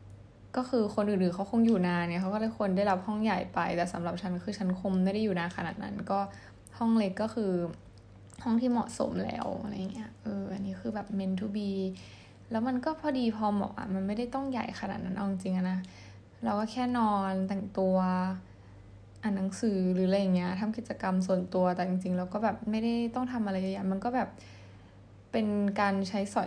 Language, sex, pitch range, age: Thai, female, 185-220 Hz, 10-29